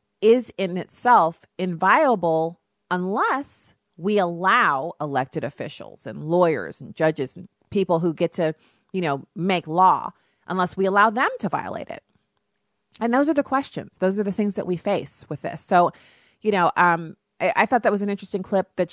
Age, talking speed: 30-49, 180 wpm